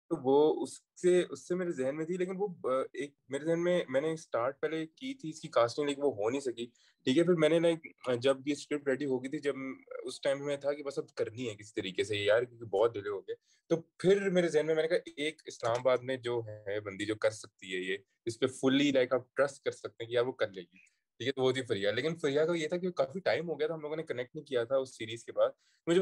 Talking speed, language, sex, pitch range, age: 250 wpm, Urdu, male, 115-165 Hz, 20-39